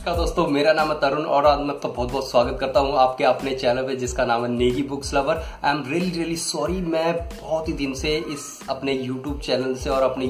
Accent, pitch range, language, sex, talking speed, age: native, 130-160 Hz, Hindi, male, 245 wpm, 20-39